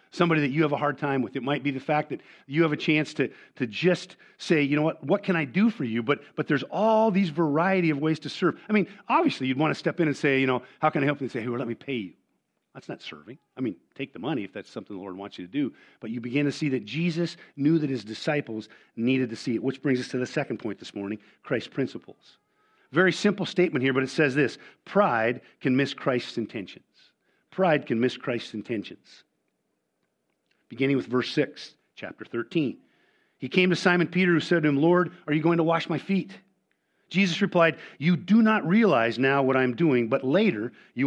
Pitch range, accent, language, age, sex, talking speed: 130-170 Hz, American, English, 50-69, male, 240 wpm